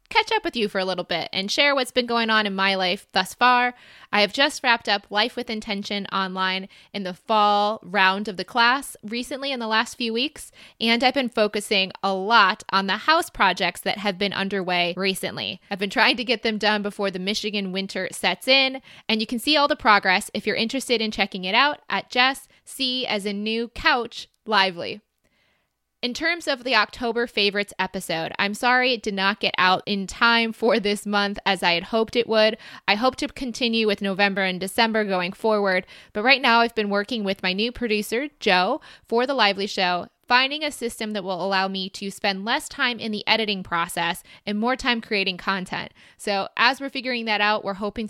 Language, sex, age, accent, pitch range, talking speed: English, female, 20-39, American, 195-240 Hz, 210 wpm